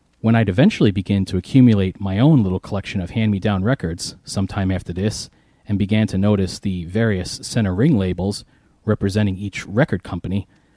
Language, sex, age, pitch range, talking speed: English, male, 30-49, 95-115 Hz, 160 wpm